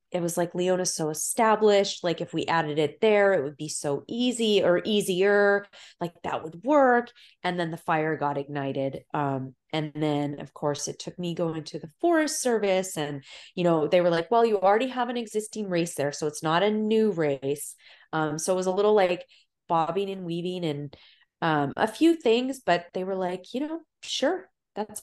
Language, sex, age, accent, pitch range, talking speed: English, female, 20-39, American, 150-195 Hz, 205 wpm